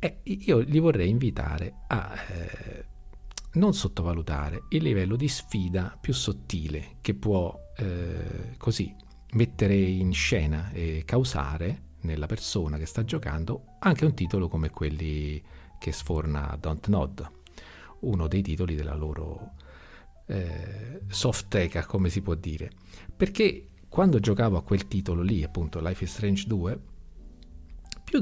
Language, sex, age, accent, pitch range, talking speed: Italian, male, 50-69, native, 80-100 Hz, 135 wpm